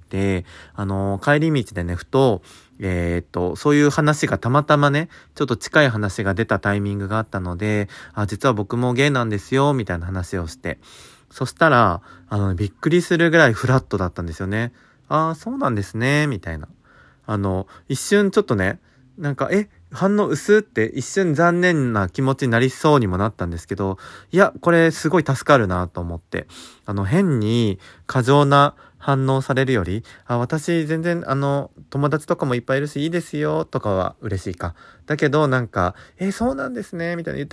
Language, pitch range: Japanese, 100-155 Hz